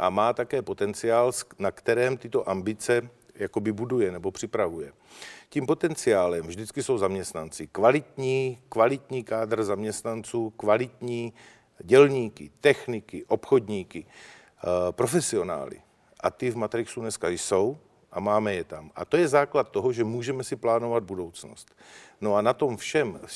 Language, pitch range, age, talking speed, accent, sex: Czech, 105-125 Hz, 50-69, 135 wpm, native, male